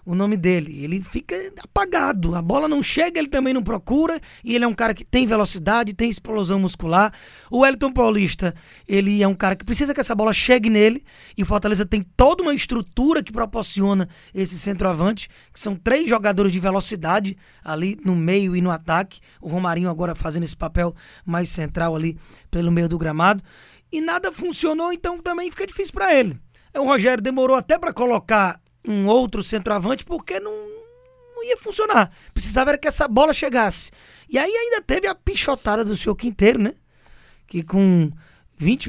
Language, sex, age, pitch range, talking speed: Portuguese, male, 20-39, 185-260 Hz, 180 wpm